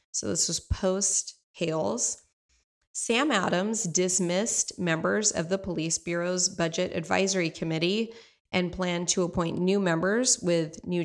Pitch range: 170-195 Hz